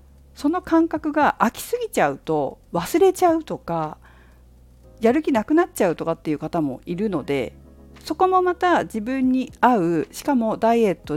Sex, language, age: female, Japanese, 50-69